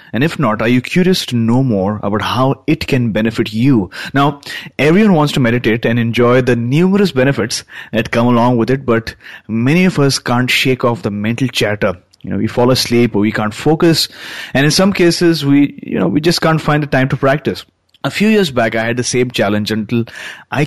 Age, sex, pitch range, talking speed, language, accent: 30-49, male, 110-145 Hz, 220 wpm, English, Indian